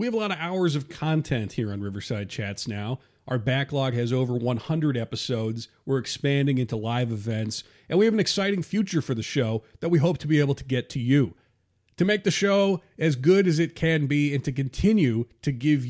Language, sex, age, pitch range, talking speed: English, male, 40-59, 120-160 Hz, 220 wpm